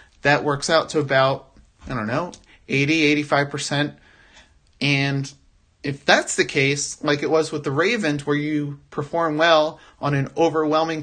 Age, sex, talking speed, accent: 30-49, male, 150 wpm, American